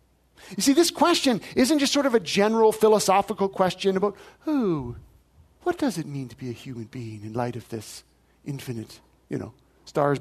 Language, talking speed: English, 180 wpm